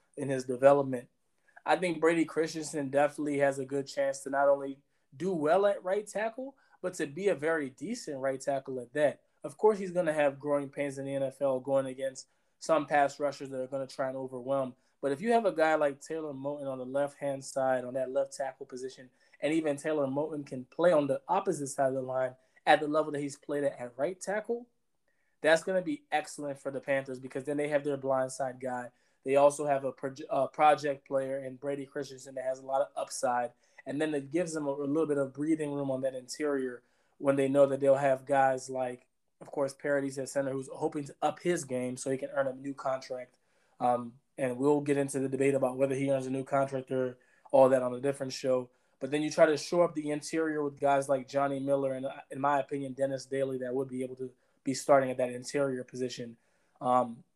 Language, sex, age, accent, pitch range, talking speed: English, male, 20-39, American, 130-150 Hz, 230 wpm